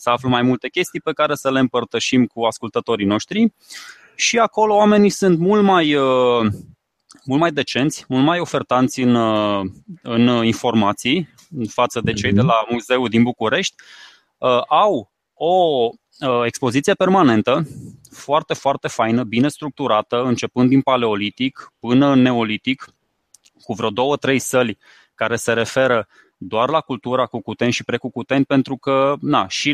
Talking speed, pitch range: 140 wpm, 120-145 Hz